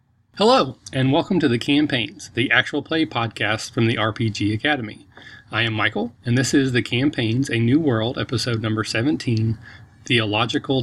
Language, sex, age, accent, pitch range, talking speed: English, male, 40-59, American, 115-140 Hz, 160 wpm